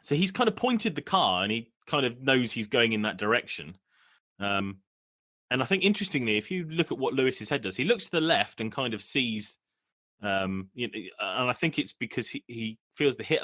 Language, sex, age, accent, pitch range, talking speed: English, male, 30-49, British, 95-130 Hz, 230 wpm